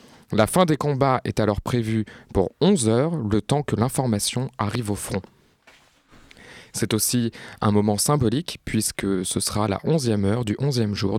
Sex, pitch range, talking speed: male, 105-135 Hz, 165 wpm